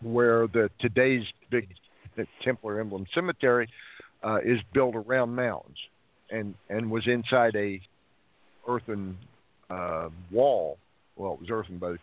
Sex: male